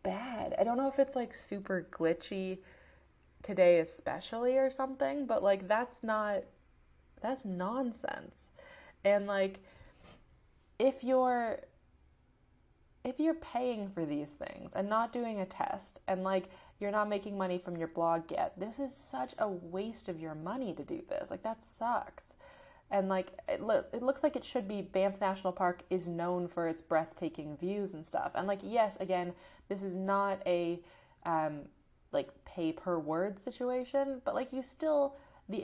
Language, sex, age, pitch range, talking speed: English, female, 20-39, 170-240 Hz, 165 wpm